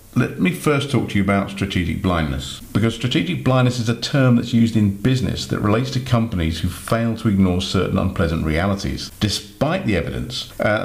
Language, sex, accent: English, male, British